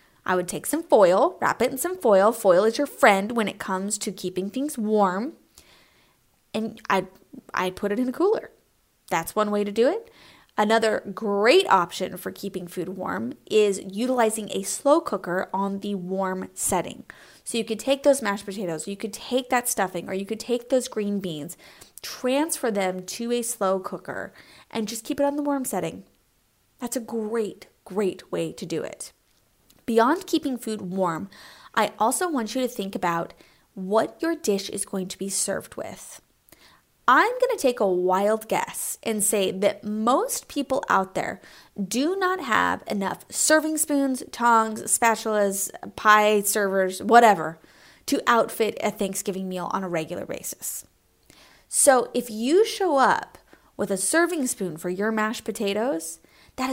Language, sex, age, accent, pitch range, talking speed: English, female, 20-39, American, 195-255 Hz, 170 wpm